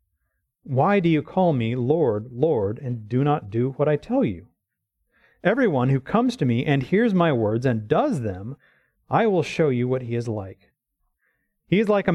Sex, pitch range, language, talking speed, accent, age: male, 120-180 Hz, English, 200 wpm, American, 30-49